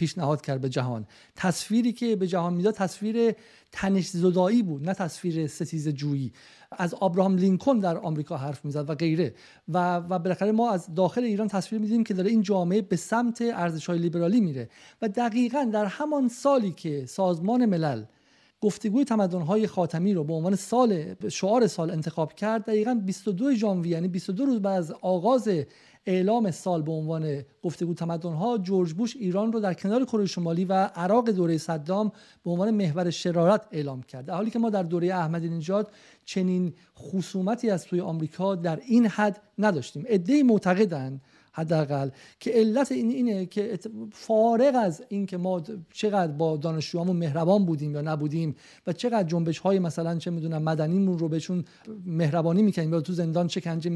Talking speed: 165 wpm